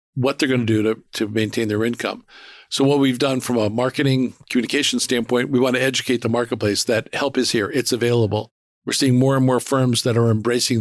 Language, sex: English, male